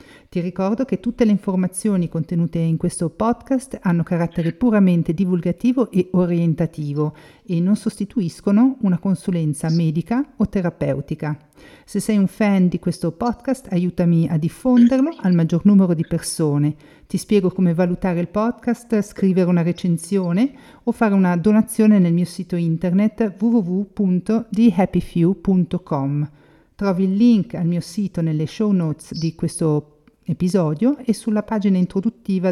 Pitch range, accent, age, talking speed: 165-210 Hz, native, 50-69, 135 wpm